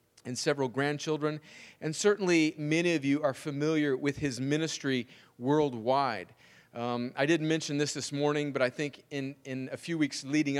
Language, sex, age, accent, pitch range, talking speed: English, male, 40-59, American, 135-160 Hz, 170 wpm